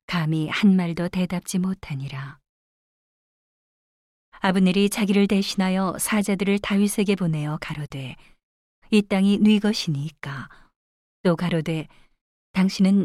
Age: 40-59